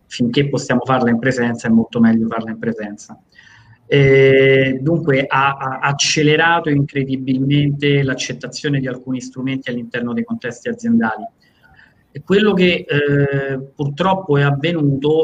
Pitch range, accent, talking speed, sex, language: 130-155 Hz, native, 120 wpm, male, Italian